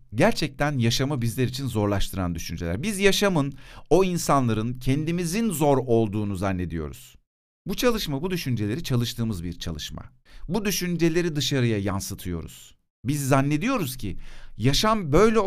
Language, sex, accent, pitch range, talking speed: Turkish, male, native, 105-170 Hz, 115 wpm